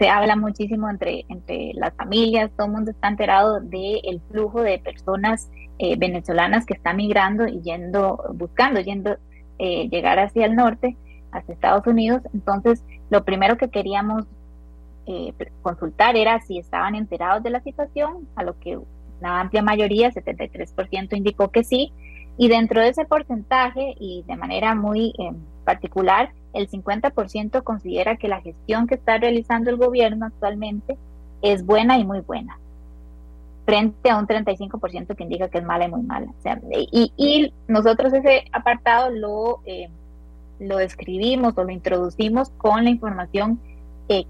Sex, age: female, 20-39